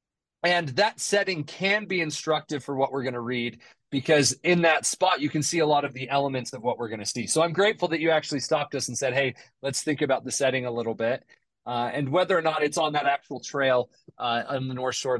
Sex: male